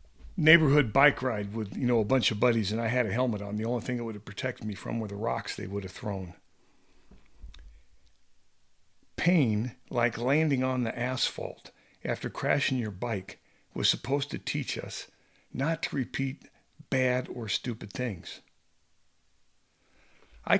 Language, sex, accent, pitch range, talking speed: English, male, American, 105-140 Hz, 160 wpm